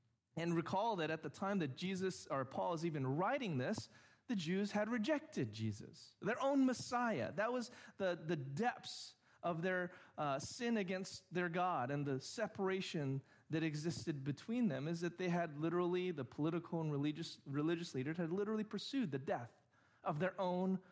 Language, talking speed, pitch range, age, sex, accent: English, 170 wpm, 140-190 Hz, 30-49, male, American